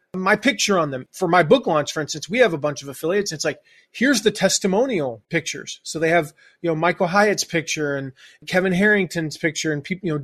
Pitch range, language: 165-220 Hz, English